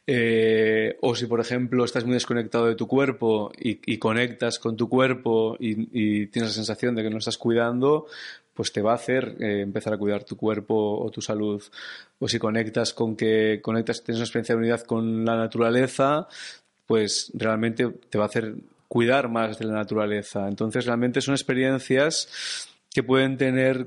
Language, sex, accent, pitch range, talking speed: Spanish, male, Spanish, 110-120 Hz, 185 wpm